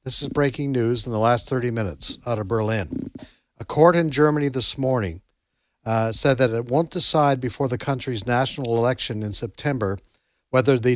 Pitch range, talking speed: 125-145 Hz, 180 wpm